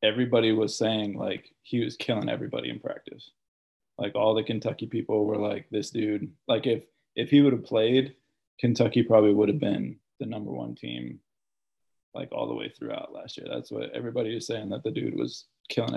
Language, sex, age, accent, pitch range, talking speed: English, male, 20-39, American, 110-130 Hz, 195 wpm